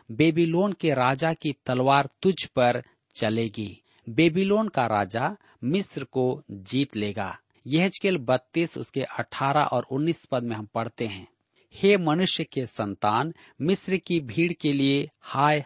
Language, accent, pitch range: Hindi, native, 120-165 Hz